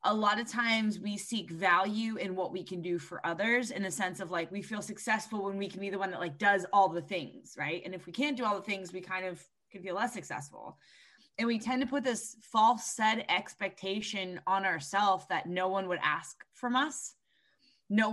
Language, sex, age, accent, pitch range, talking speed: English, female, 20-39, American, 185-220 Hz, 230 wpm